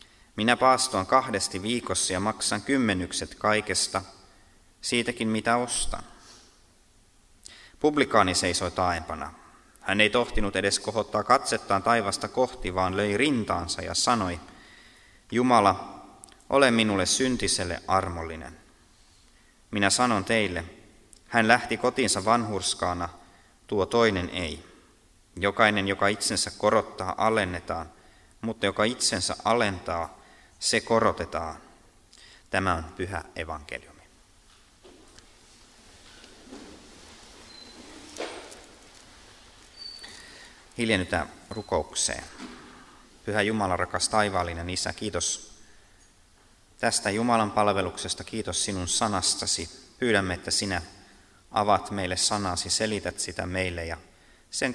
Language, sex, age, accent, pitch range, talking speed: Finnish, male, 20-39, native, 90-110 Hz, 90 wpm